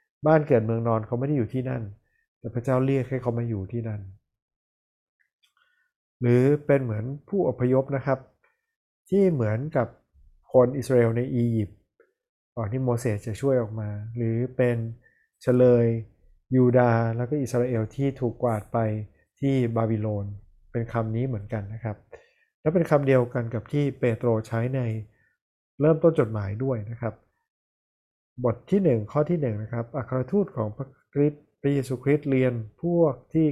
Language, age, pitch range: Thai, 20-39, 110-135 Hz